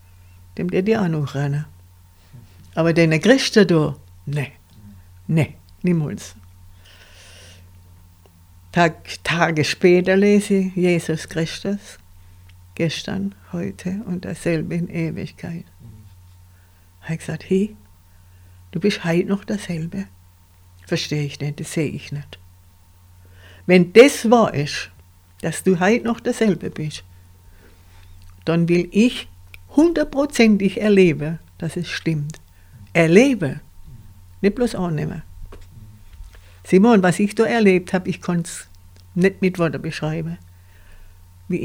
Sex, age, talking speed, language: female, 60-79, 110 wpm, German